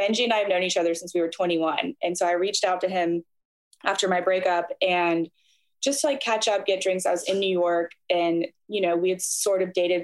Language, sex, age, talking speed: English, female, 20-39, 245 wpm